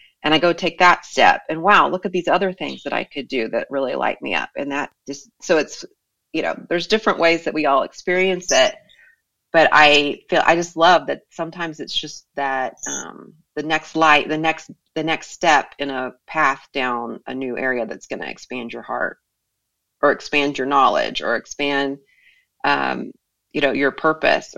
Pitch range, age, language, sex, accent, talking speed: 140-180 Hz, 30-49, English, female, American, 200 wpm